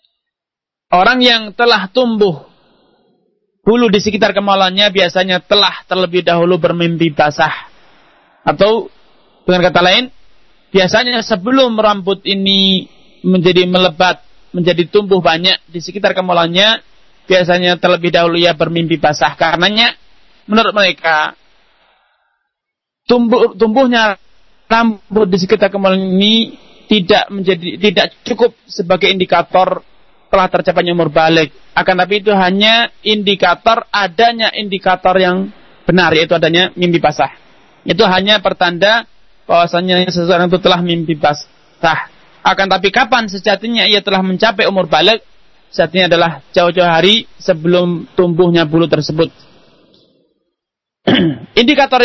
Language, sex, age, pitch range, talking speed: Malay, male, 30-49, 175-210 Hz, 110 wpm